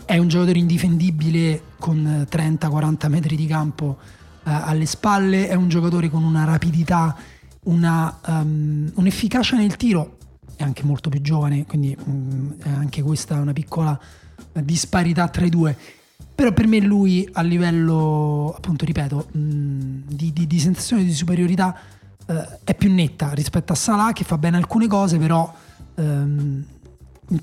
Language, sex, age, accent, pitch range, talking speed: Italian, male, 30-49, native, 150-175 Hz, 155 wpm